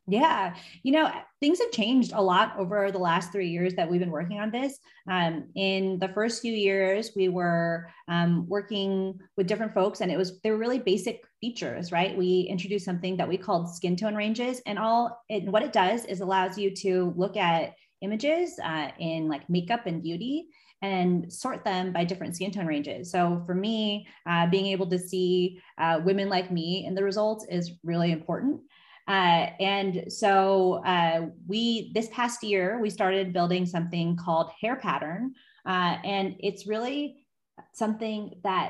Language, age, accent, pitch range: English, 30-49, American, 175-220 Hz